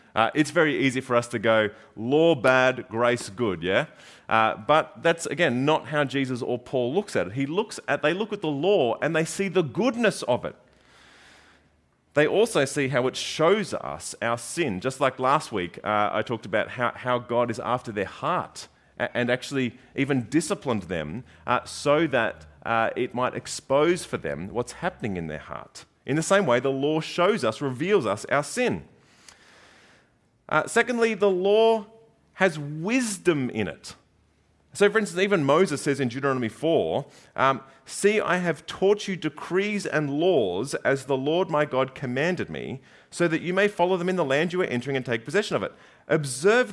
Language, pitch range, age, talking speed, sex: English, 125-180 Hz, 30-49, 185 wpm, male